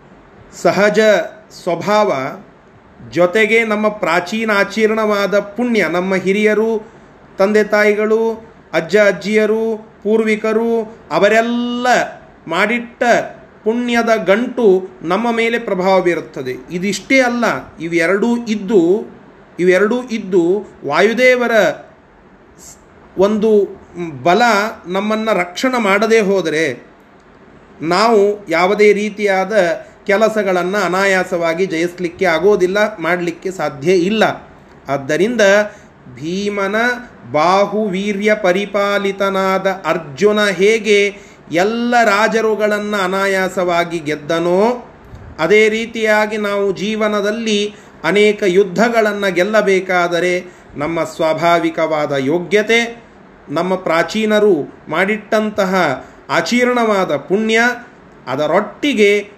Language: Kannada